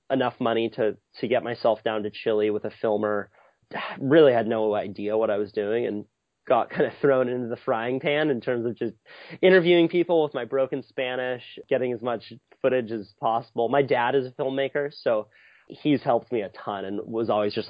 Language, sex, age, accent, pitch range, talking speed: English, male, 30-49, American, 115-140 Hz, 205 wpm